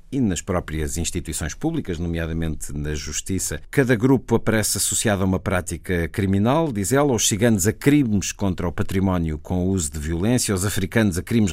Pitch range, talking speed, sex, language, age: 90-110 Hz, 175 wpm, male, Portuguese, 50-69